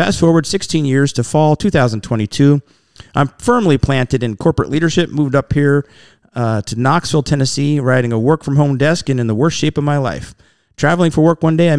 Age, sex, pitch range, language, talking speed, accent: 40-59, male, 120-155 Hz, English, 195 wpm, American